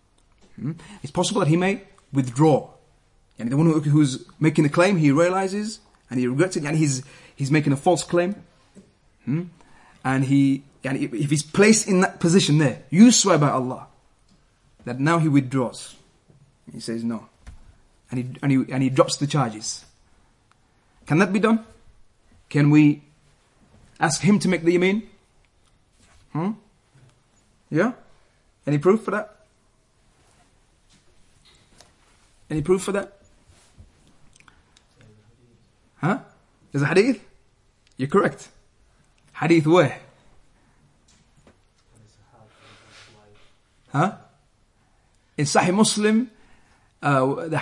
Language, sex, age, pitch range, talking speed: English, male, 30-49, 120-175 Hz, 120 wpm